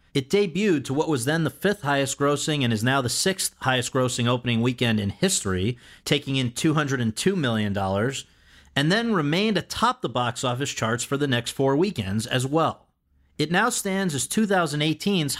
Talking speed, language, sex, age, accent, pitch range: 175 wpm, English, male, 40-59, American, 115-160 Hz